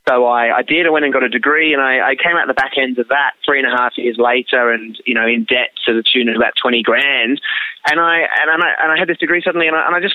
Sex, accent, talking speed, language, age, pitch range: male, Australian, 315 wpm, English, 20-39, 125-140 Hz